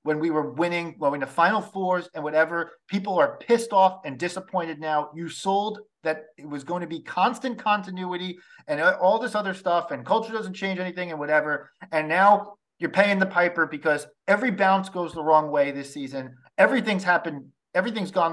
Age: 40-59